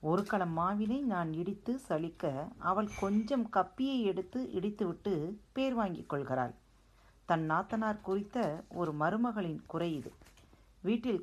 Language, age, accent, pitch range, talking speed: Tamil, 40-59, native, 140-205 Hz, 105 wpm